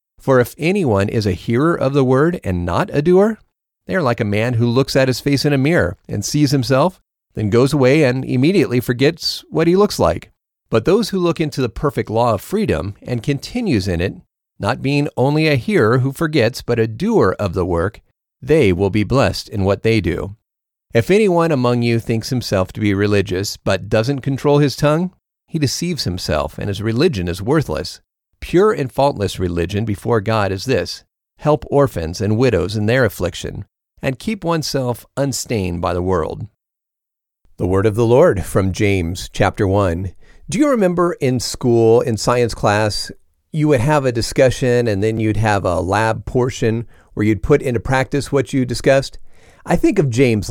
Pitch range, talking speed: 100-140 Hz, 190 wpm